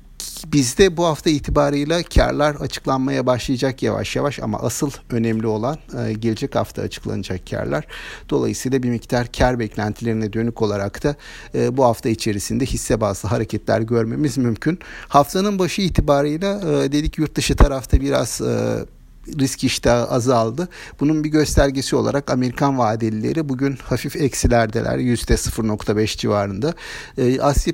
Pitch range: 115-145 Hz